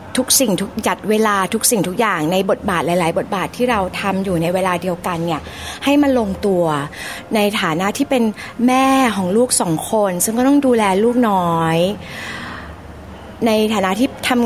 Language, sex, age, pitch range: Thai, female, 20-39, 180-245 Hz